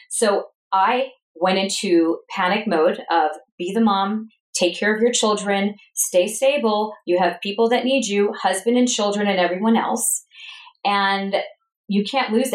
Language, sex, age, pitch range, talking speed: English, female, 40-59, 175-225 Hz, 160 wpm